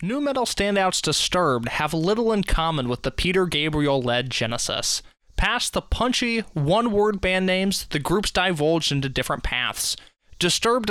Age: 20-39